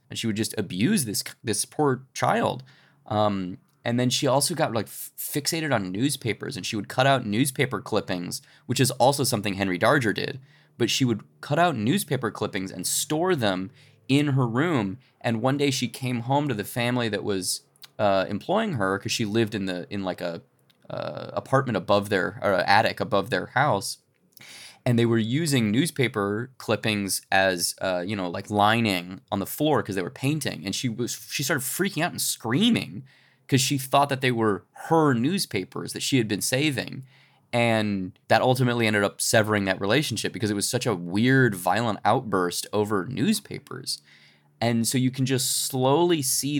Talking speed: 185 wpm